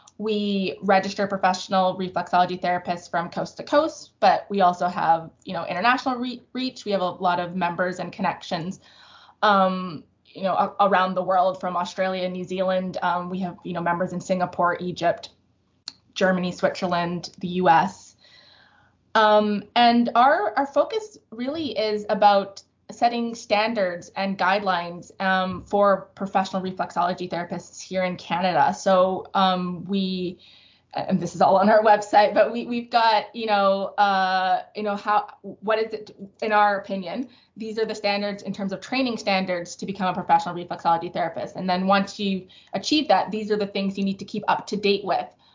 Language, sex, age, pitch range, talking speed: English, female, 20-39, 185-210 Hz, 165 wpm